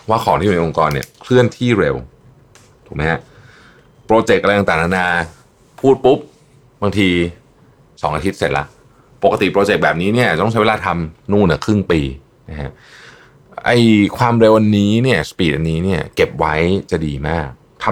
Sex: male